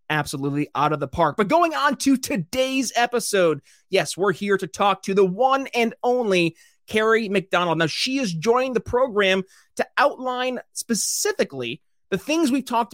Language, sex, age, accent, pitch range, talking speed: English, male, 30-49, American, 160-235 Hz, 165 wpm